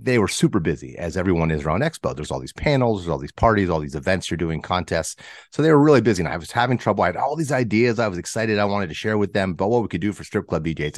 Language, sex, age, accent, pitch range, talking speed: English, male, 30-49, American, 85-115 Hz, 305 wpm